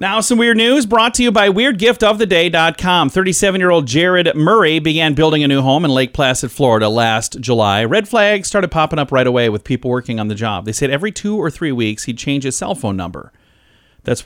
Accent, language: American, English